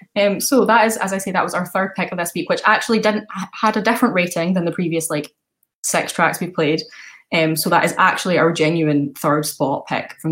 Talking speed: 240 wpm